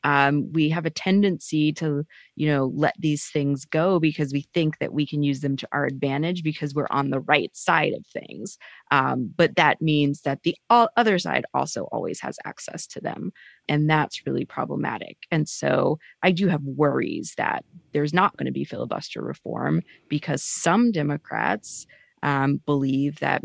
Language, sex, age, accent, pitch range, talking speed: English, female, 20-39, American, 145-170 Hz, 175 wpm